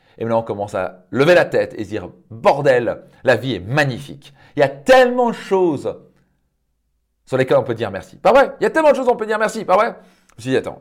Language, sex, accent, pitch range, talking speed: French, male, French, 110-145 Hz, 260 wpm